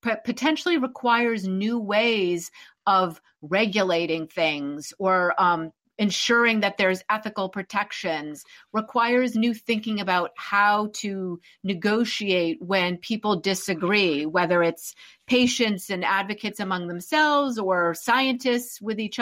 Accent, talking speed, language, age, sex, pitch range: American, 110 wpm, English, 40-59, female, 185-230 Hz